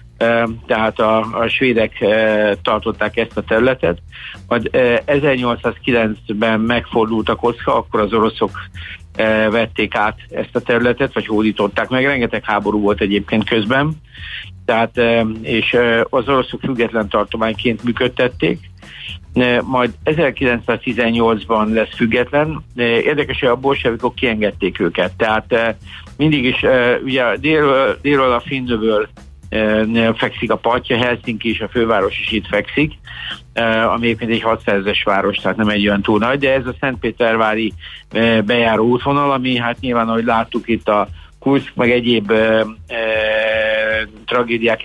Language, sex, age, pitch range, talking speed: Hungarian, male, 60-79, 105-120 Hz, 135 wpm